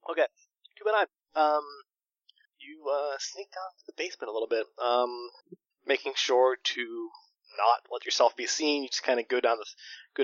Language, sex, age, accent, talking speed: English, male, 20-39, American, 180 wpm